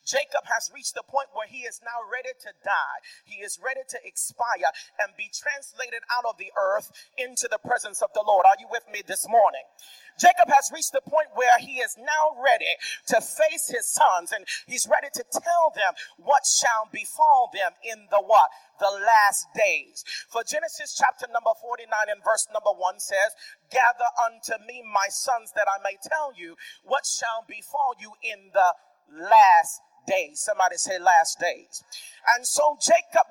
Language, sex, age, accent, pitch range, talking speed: English, male, 40-59, American, 220-330 Hz, 180 wpm